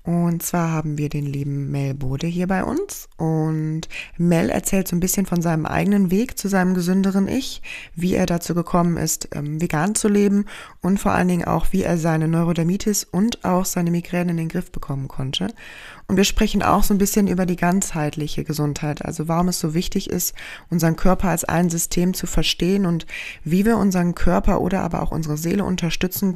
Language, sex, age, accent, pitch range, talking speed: German, female, 20-39, German, 160-190 Hz, 195 wpm